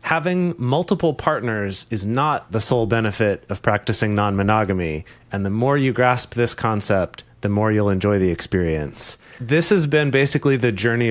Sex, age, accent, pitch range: male, 30-49, American, 100-125 Hz